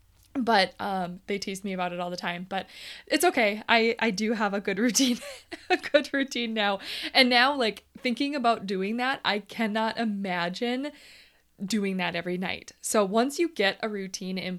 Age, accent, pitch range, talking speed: 20-39, American, 195-250 Hz, 185 wpm